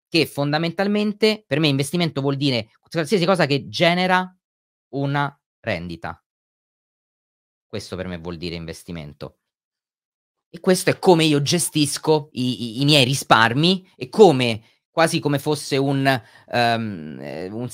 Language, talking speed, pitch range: Italian, 120 wpm, 125-180 Hz